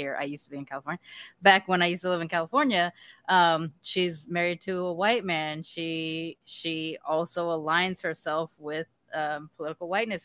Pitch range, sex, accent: 150-175 Hz, female, American